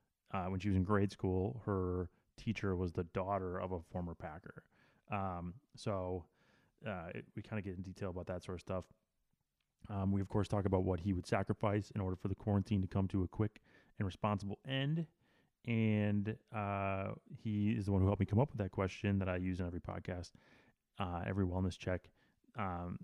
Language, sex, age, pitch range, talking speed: English, male, 30-49, 95-110 Hz, 205 wpm